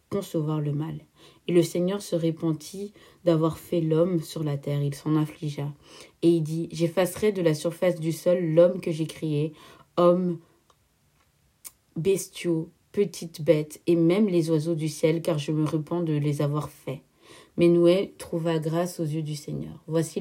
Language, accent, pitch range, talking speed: French, French, 150-175 Hz, 170 wpm